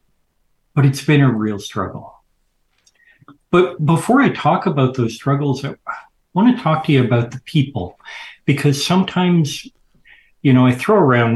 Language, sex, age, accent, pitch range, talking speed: English, male, 50-69, American, 105-135 Hz, 150 wpm